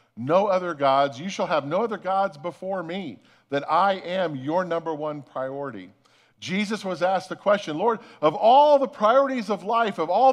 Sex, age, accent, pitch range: male, 50-69, American, 140-195 Hz